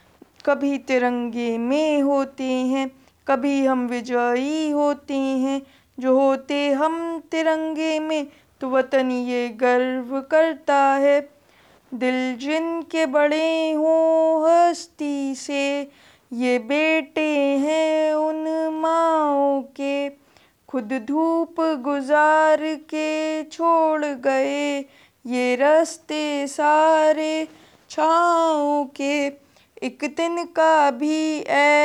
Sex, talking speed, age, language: female, 90 wpm, 20-39, Hindi